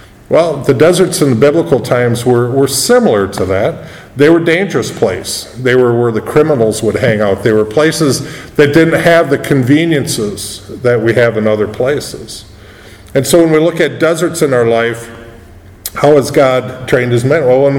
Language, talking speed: English, 190 wpm